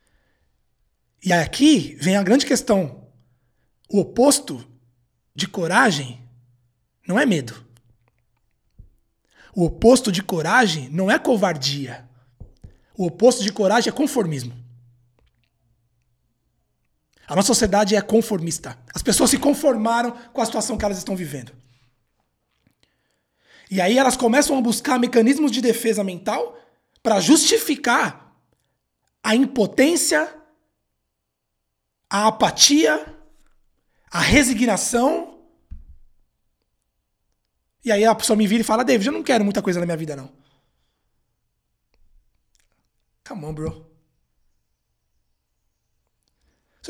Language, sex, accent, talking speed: Portuguese, male, Brazilian, 105 wpm